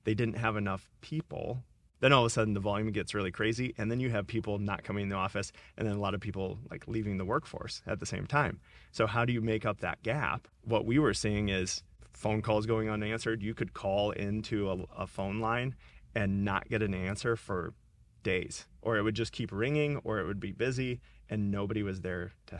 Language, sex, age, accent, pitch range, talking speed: English, male, 30-49, American, 95-115 Hz, 230 wpm